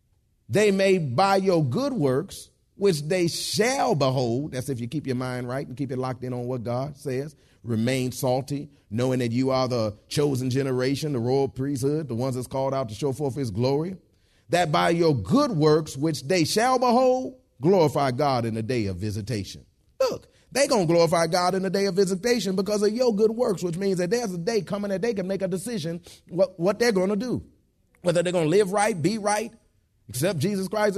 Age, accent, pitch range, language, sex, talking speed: 30-49, American, 130-190 Hz, English, male, 205 wpm